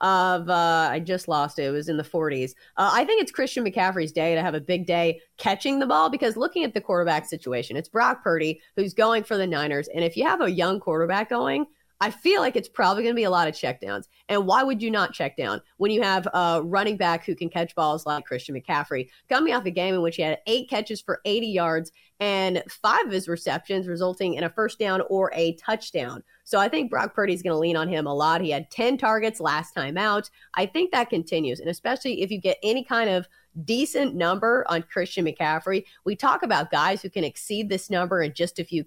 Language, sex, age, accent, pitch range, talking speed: English, female, 30-49, American, 165-215 Hz, 240 wpm